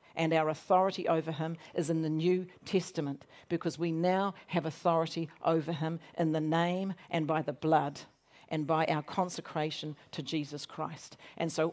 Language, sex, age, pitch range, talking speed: English, female, 50-69, 170-215 Hz, 170 wpm